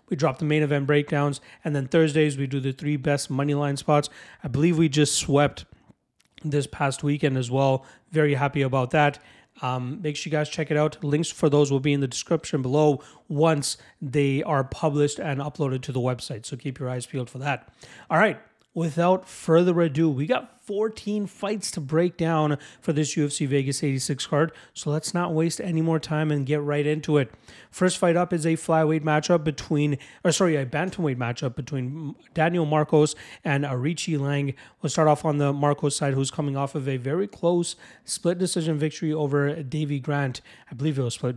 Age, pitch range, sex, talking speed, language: 30-49, 140-160 Hz, male, 200 wpm, English